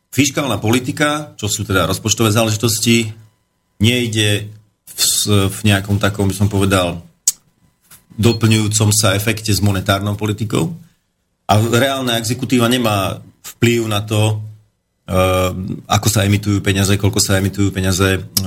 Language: Slovak